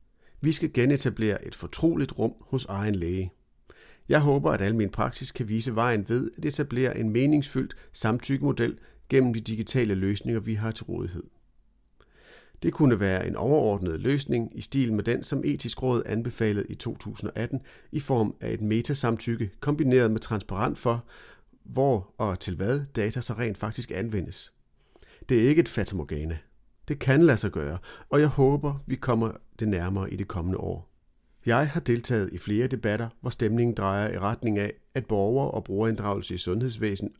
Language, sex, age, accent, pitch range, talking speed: Danish, male, 40-59, native, 105-130 Hz, 170 wpm